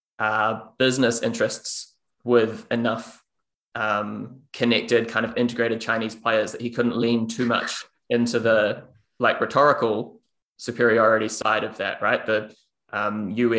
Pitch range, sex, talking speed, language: 115-130 Hz, male, 130 wpm, English